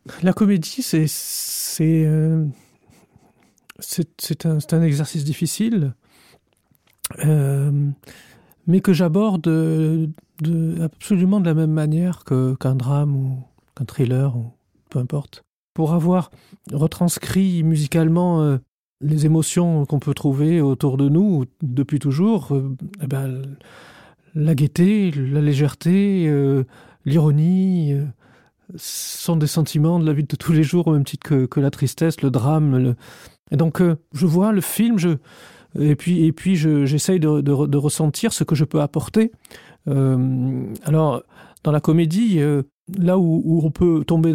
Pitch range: 140-170 Hz